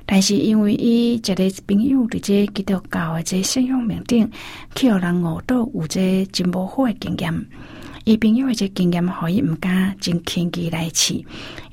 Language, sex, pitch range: Chinese, female, 170-205 Hz